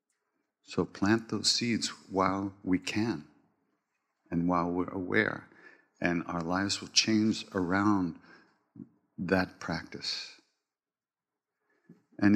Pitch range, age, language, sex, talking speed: 90-105 Hz, 60-79, English, male, 95 wpm